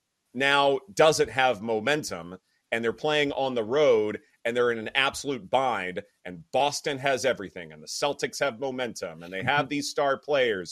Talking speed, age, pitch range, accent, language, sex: 175 wpm, 30-49, 120-165 Hz, American, English, male